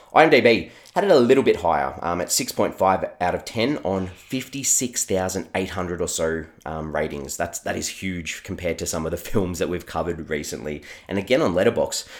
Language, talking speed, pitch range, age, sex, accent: English, 185 wpm, 80-105 Hz, 20-39, male, Australian